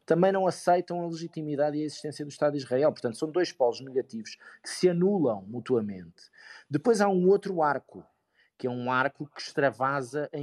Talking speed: 190 wpm